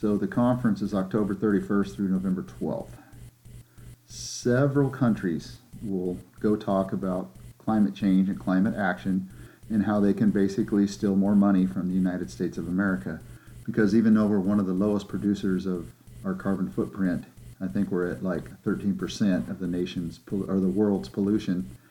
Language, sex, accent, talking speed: English, male, American, 160 wpm